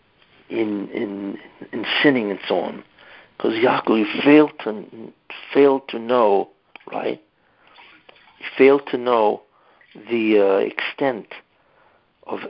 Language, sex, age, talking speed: English, male, 60-79, 110 wpm